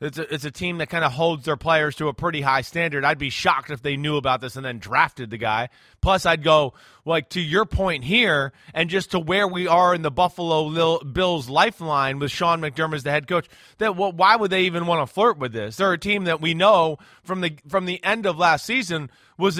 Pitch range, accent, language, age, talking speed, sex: 150-190 Hz, American, English, 30-49, 250 wpm, male